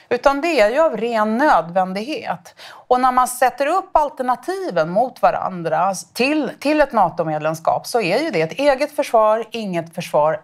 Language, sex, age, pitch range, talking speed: Swedish, female, 30-49, 160-230 Hz, 160 wpm